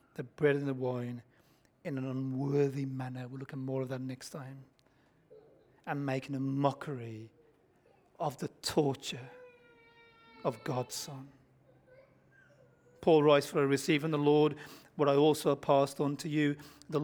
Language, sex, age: English, male, 40-59